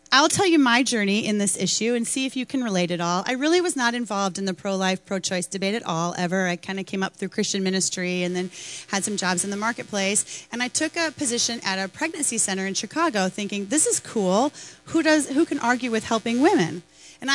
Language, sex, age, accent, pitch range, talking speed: English, female, 30-49, American, 190-250 Hz, 235 wpm